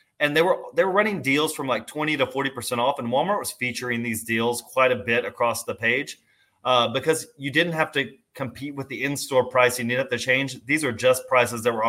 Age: 30-49